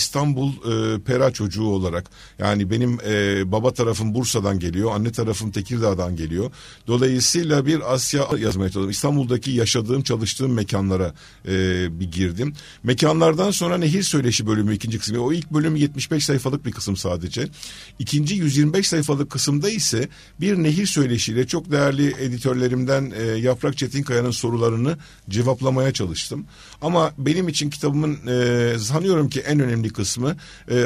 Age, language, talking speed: 50-69, Turkish, 140 wpm